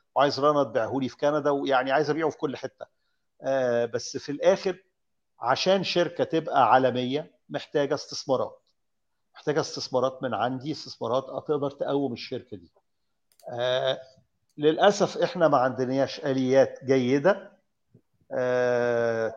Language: Arabic